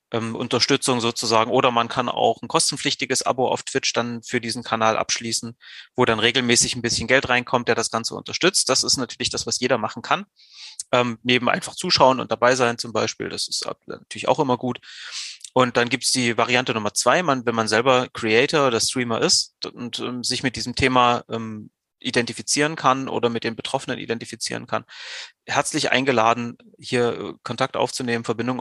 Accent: German